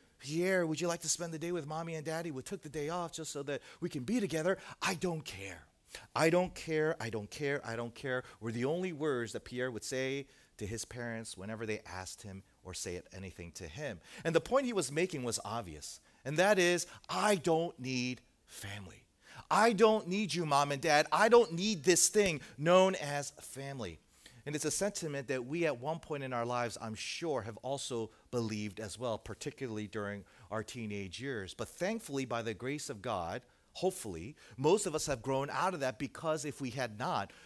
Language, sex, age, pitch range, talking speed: English, male, 40-59, 115-160 Hz, 210 wpm